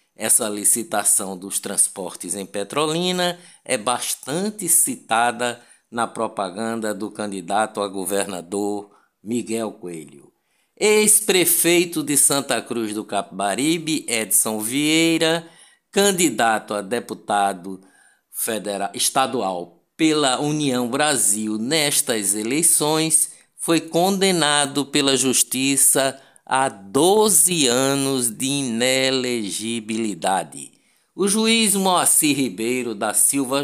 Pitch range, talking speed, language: 110-165 Hz, 85 wpm, Portuguese